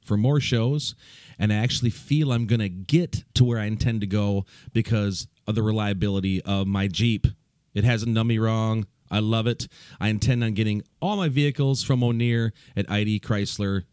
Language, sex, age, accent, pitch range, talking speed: English, male, 40-59, American, 105-130 Hz, 190 wpm